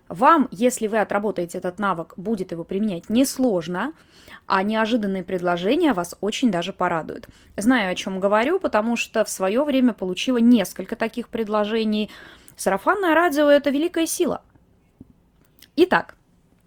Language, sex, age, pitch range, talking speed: Russian, female, 20-39, 205-265 Hz, 130 wpm